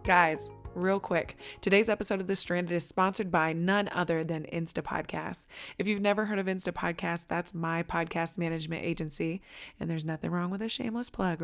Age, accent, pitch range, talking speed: 20-39, American, 170-205 Hz, 180 wpm